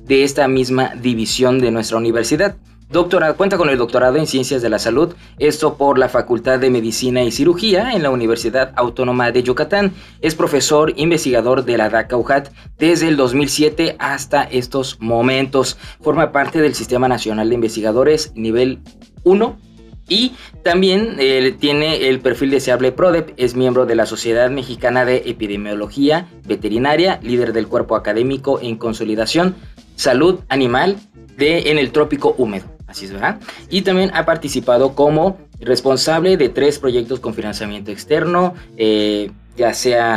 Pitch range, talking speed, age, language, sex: 120-155 Hz, 150 wpm, 20-39, Spanish, male